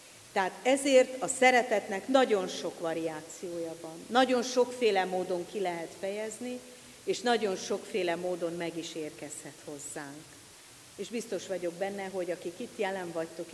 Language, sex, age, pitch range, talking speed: Hungarian, female, 50-69, 170-230 Hz, 135 wpm